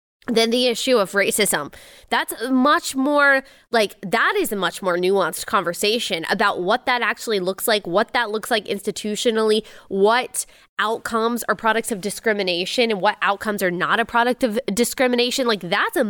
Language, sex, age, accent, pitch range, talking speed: English, female, 20-39, American, 190-250 Hz, 170 wpm